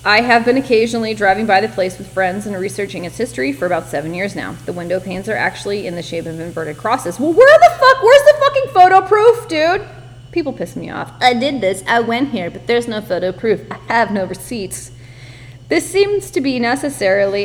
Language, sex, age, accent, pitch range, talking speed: English, female, 30-49, American, 180-240 Hz, 220 wpm